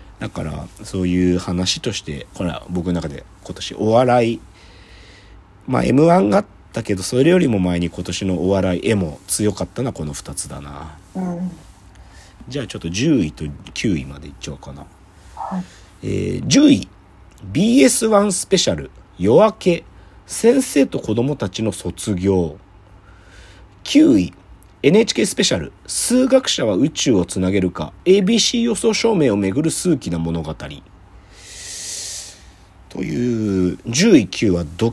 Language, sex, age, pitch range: Japanese, male, 40-59, 90-135 Hz